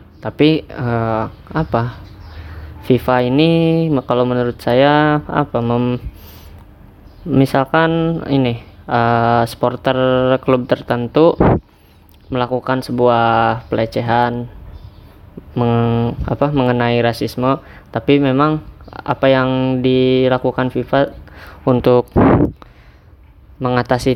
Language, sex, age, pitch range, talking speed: Indonesian, female, 20-39, 100-130 Hz, 75 wpm